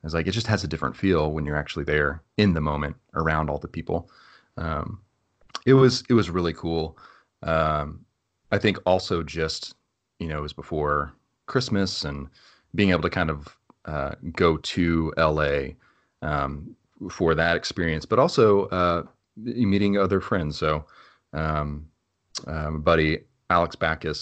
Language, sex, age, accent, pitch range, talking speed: English, male, 30-49, American, 75-90 Hz, 160 wpm